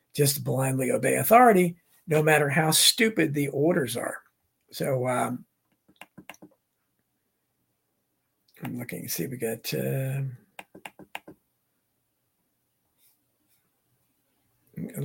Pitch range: 135-175 Hz